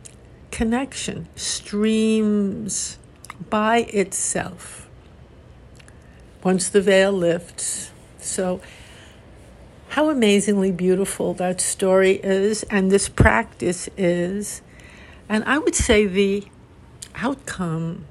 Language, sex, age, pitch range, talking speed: English, female, 60-79, 190-230 Hz, 85 wpm